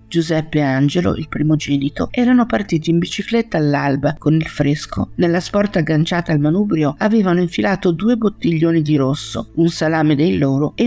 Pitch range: 145-200 Hz